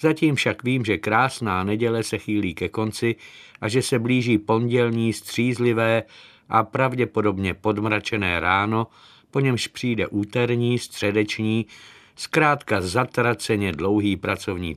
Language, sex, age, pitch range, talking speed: Czech, male, 50-69, 100-120 Hz, 120 wpm